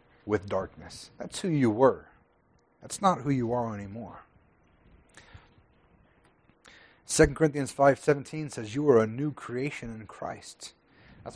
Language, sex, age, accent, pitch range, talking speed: English, male, 30-49, American, 115-150 Hz, 125 wpm